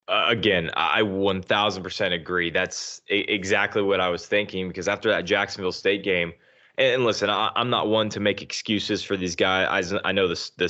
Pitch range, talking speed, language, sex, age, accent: 100-115 Hz, 210 wpm, English, male, 20-39, American